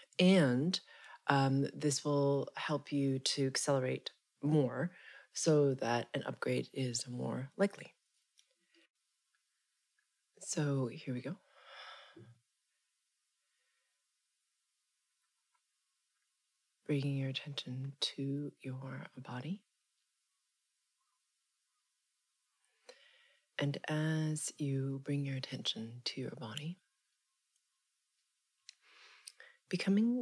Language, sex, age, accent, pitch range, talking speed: English, female, 30-49, American, 135-155 Hz, 70 wpm